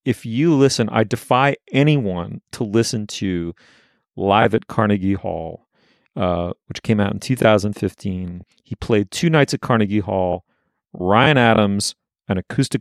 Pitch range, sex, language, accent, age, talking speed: 100-135 Hz, male, English, American, 40-59, 140 wpm